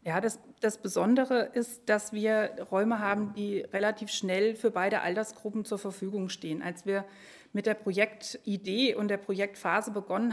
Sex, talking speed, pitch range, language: female, 155 wpm, 195-230 Hz, German